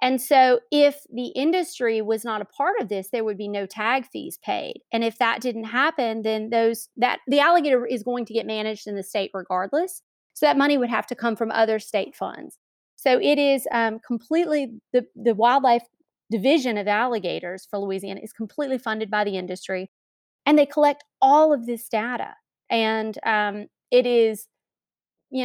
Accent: American